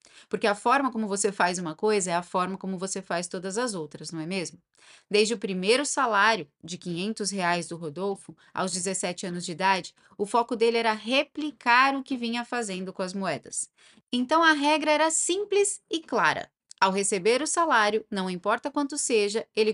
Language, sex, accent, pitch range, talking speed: Portuguese, female, Brazilian, 195-260 Hz, 190 wpm